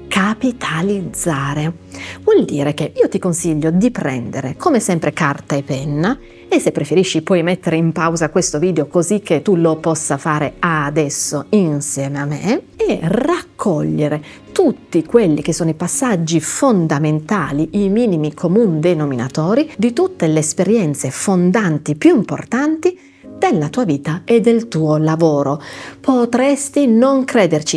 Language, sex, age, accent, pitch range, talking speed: Italian, female, 30-49, native, 155-235 Hz, 135 wpm